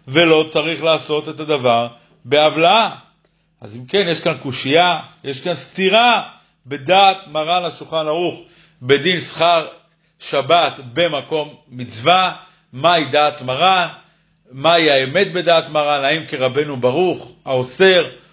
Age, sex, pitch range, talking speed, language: 50-69, male, 150-185 Hz, 115 wpm, Hebrew